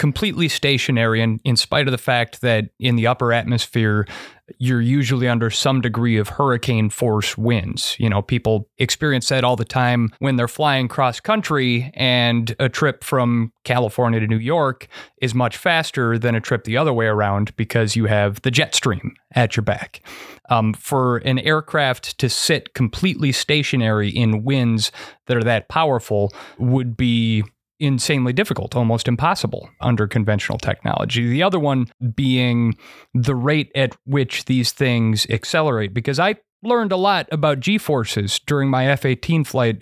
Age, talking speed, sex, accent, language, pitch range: 30-49, 160 wpm, male, American, English, 115-140 Hz